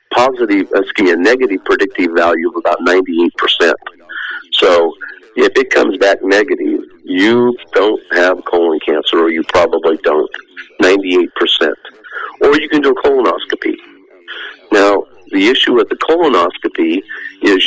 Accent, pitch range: American, 345-425 Hz